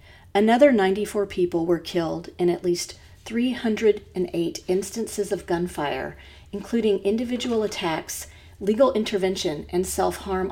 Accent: American